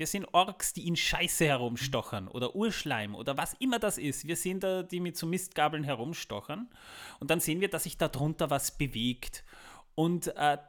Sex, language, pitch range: male, German, 135-175 Hz